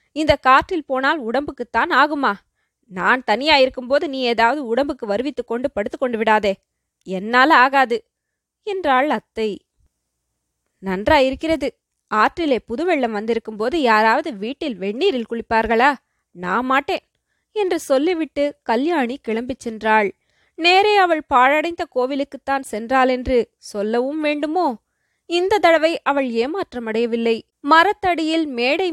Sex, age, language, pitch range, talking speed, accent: female, 20-39, Tamil, 230-310 Hz, 100 wpm, native